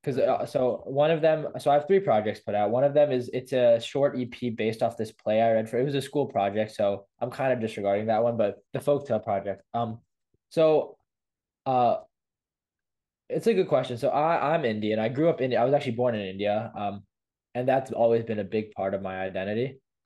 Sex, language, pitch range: male, English, 105-130 Hz